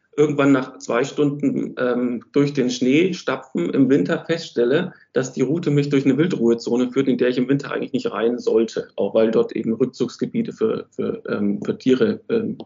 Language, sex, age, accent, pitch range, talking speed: German, male, 40-59, German, 125-150 Hz, 185 wpm